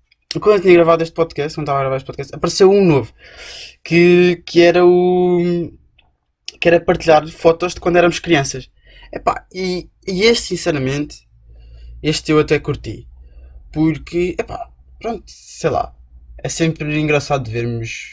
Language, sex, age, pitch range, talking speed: Portuguese, male, 20-39, 125-160 Hz, 150 wpm